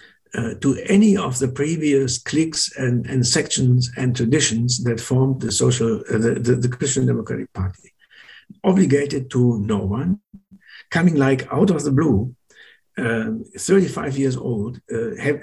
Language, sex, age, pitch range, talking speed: English, male, 60-79, 115-155 Hz, 150 wpm